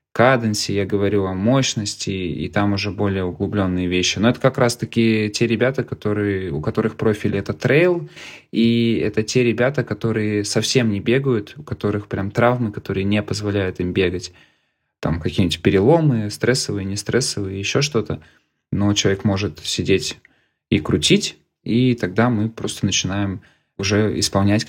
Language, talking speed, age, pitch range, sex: Russian, 140 wpm, 20-39, 95-110 Hz, male